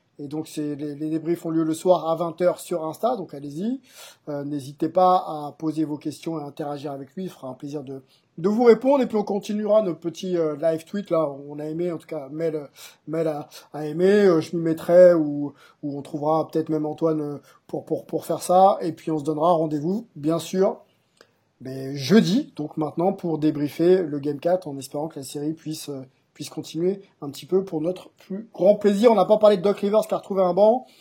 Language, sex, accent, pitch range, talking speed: French, male, French, 150-185 Hz, 230 wpm